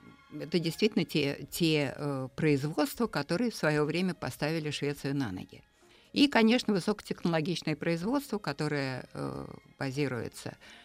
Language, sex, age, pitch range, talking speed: Russian, female, 60-79, 140-175 Hz, 115 wpm